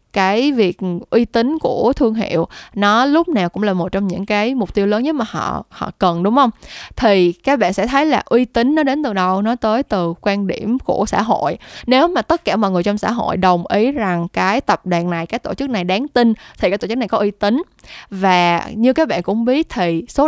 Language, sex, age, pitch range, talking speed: Vietnamese, female, 10-29, 185-245 Hz, 250 wpm